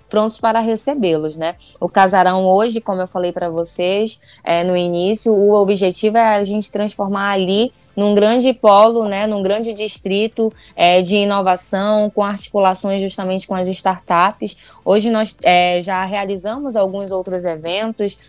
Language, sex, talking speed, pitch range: Portuguese, female, 150 wpm, 180-210 Hz